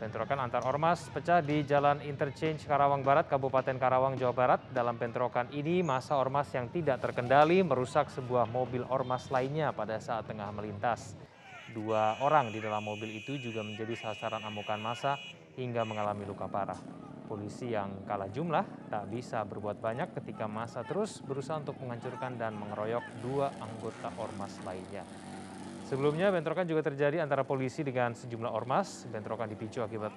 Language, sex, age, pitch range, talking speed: Indonesian, male, 20-39, 110-140 Hz, 155 wpm